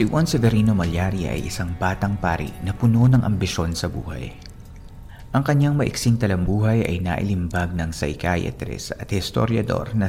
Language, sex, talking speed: Filipino, male, 150 wpm